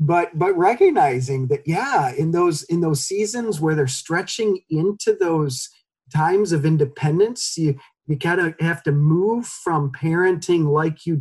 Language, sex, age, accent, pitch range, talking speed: English, male, 40-59, American, 140-175 Hz, 155 wpm